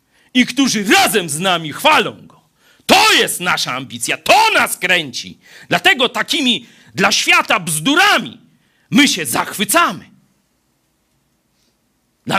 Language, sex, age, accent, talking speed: Polish, male, 40-59, native, 110 wpm